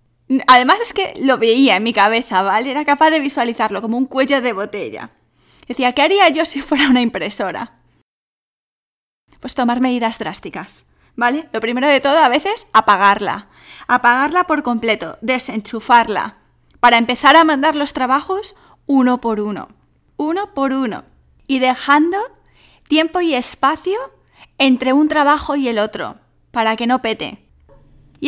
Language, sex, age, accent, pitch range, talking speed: English, female, 10-29, Spanish, 225-295 Hz, 150 wpm